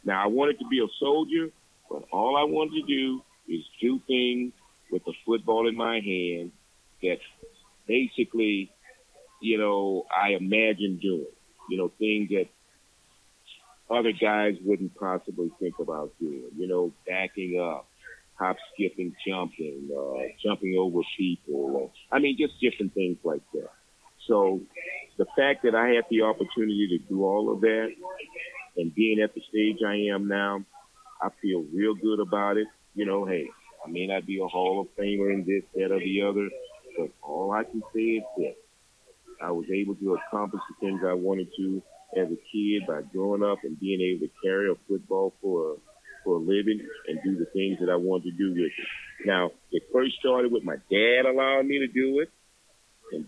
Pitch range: 95-125 Hz